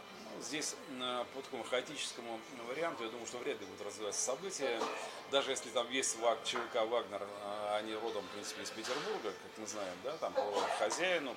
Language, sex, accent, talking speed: Russian, male, native, 165 wpm